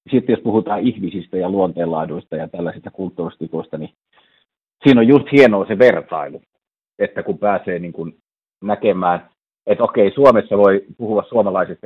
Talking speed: 140 wpm